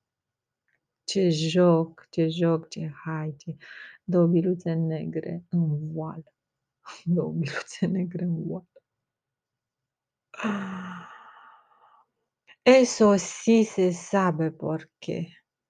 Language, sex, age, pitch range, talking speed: Romanian, female, 30-49, 165-185 Hz, 80 wpm